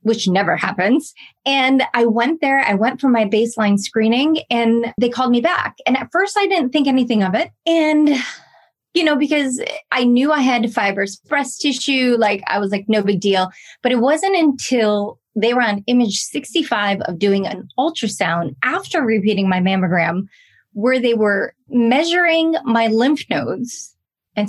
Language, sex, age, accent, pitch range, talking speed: English, female, 20-39, American, 200-270 Hz, 170 wpm